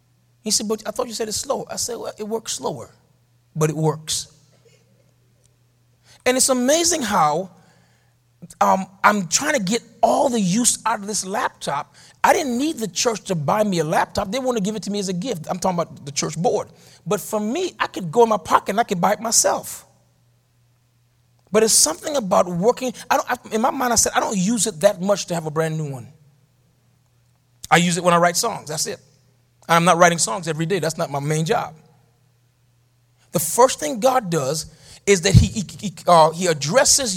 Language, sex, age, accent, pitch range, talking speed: English, male, 30-49, American, 135-225 Hz, 215 wpm